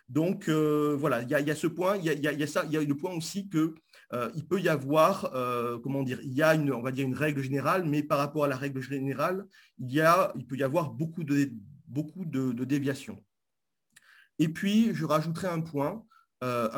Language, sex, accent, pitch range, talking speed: French, male, French, 125-165 Hz, 245 wpm